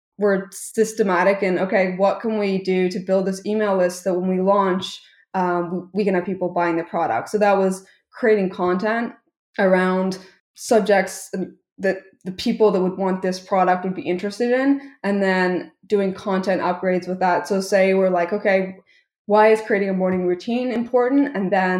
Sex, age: female, 20-39